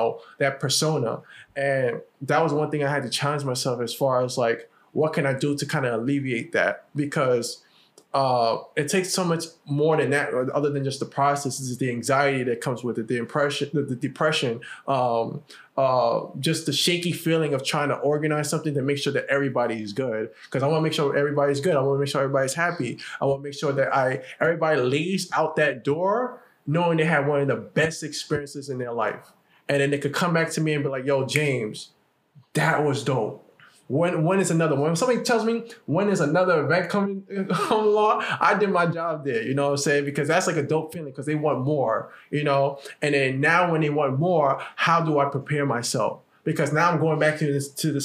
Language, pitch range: English, 135-160 Hz